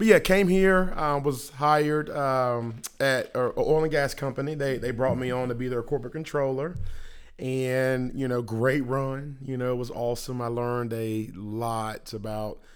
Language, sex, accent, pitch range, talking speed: English, male, American, 110-130 Hz, 190 wpm